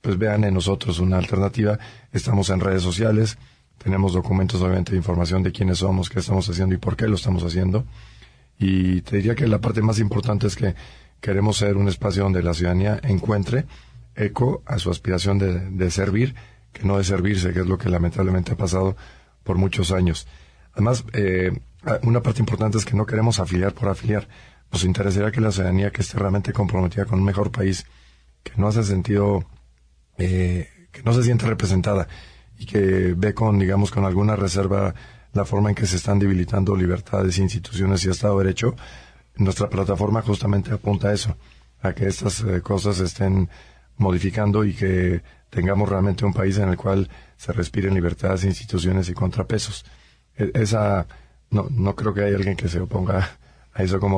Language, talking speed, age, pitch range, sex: Spanish, 180 wpm, 40-59, 90-105 Hz, male